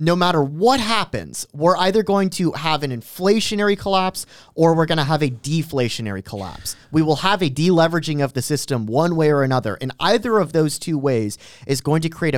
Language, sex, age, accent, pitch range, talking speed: English, male, 30-49, American, 135-185 Hz, 205 wpm